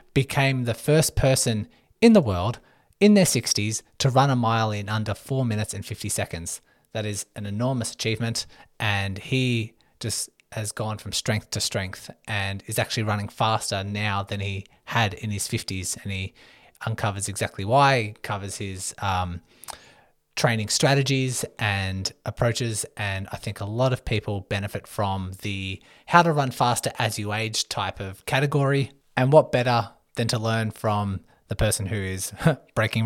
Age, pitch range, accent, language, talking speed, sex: 20-39, 100-120 Hz, Australian, English, 165 wpm, male